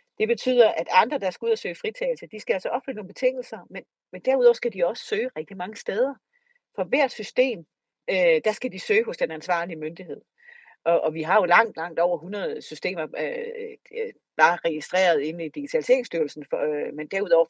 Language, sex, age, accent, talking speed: Danish, female, 40-59, native, 200 wpm